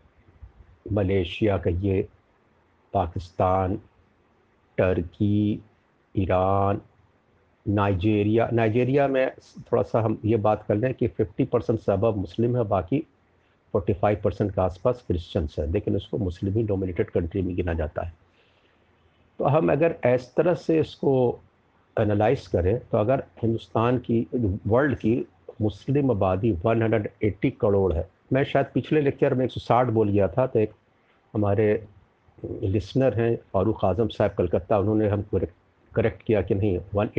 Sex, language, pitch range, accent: male, Hindi, 100-125 Hz, native